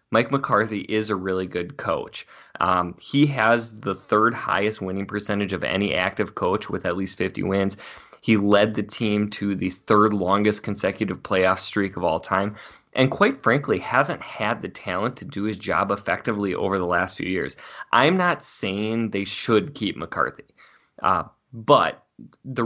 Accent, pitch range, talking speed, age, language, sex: American, 95-115 Hz, 170 wpm, 20-39, English, male